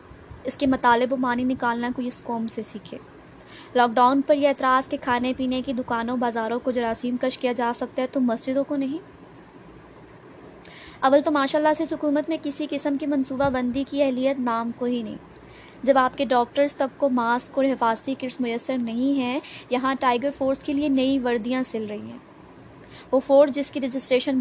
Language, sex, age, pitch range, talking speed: Urdu, female, 20-39, 245-285 Hz, 190 wpm